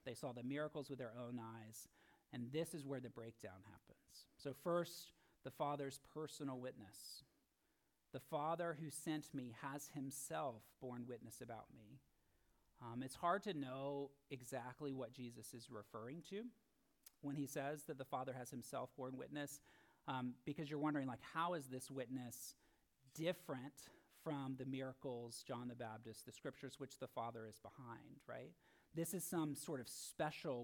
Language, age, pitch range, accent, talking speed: English, 40-59, 120-150 Hz, American, 165 wpm